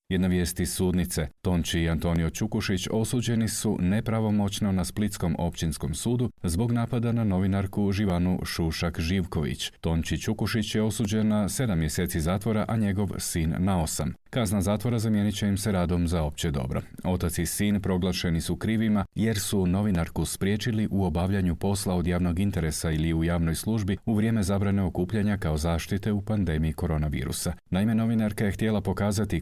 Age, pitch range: 40-59, 85-105 Hz